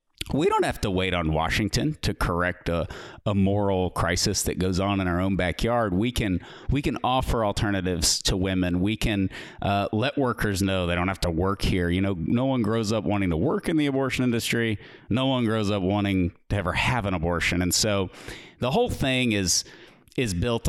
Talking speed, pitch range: 205 wpm, 95-115 Hz